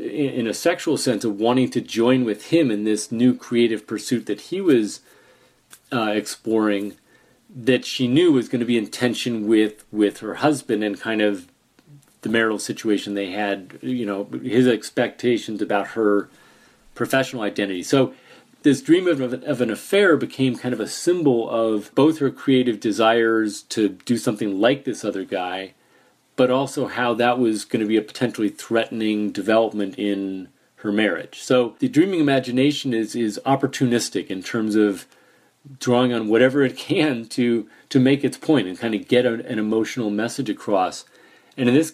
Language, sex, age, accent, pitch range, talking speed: English, male, 40-59, American, 105-130 Hz, 170 wpm